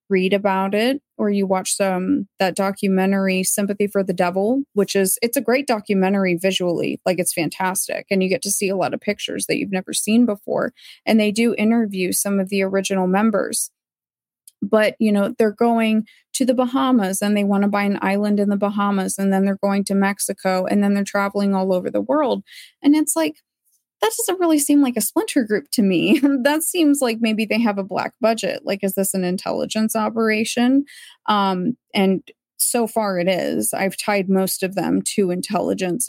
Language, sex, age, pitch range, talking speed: English, female, 20-39, 190-230 Hz, 200 wpm